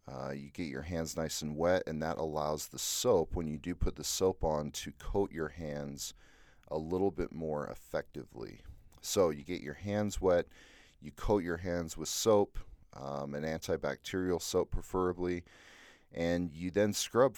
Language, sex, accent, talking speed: English, male, American, 175 wpm